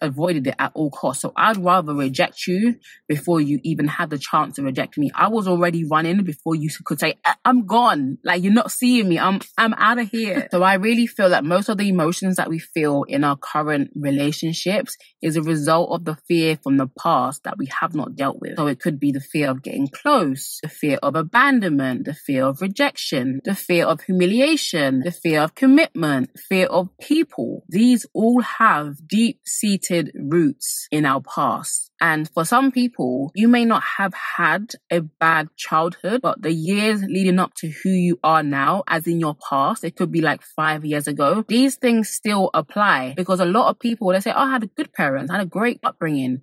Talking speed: 205 wpm